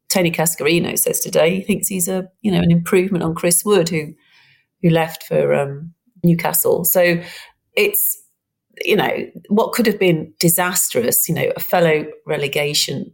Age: 40-59